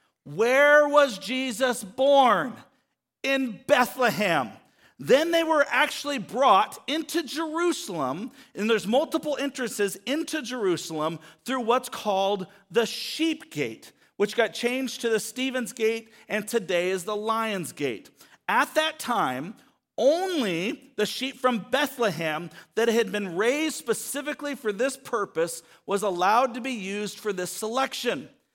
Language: English